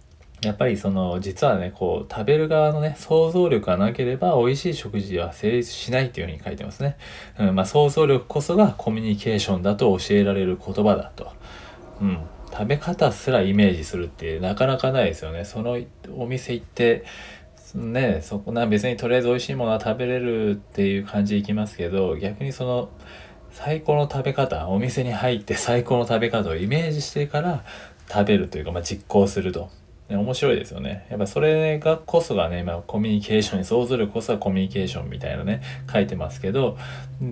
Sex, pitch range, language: male, 95-130 Hz, Japanese